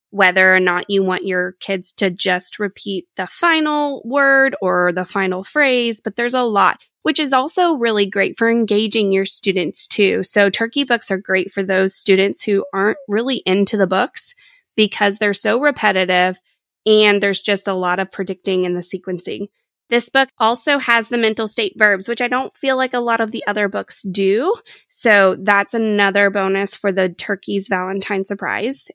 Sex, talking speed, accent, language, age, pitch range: female, 180 wpm, American, English, 20-39, 190-240 Hz